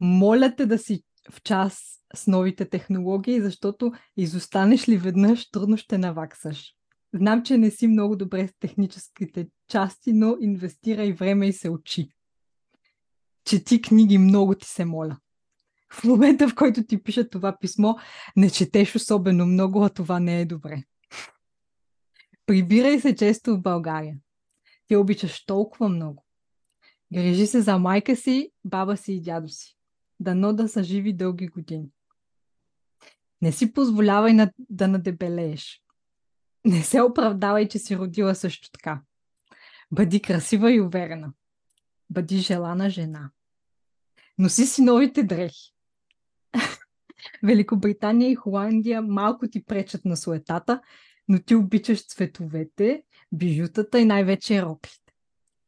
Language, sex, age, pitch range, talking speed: Bulgarian, female, 20-39, 180-220 Hz, 130 wpm